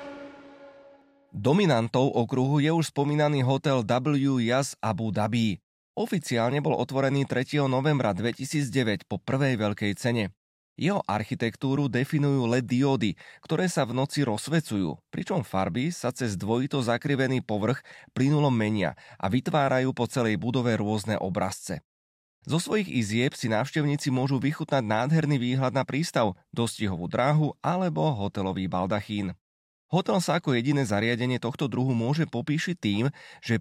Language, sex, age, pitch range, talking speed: Slovak, male, 20-39, 110-145 Hz, 130 wpm